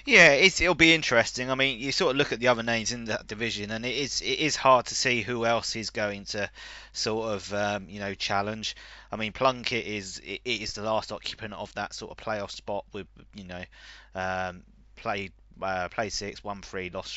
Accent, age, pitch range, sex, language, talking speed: British, 20-39, 100-130 Hz, male, English, 225 wpm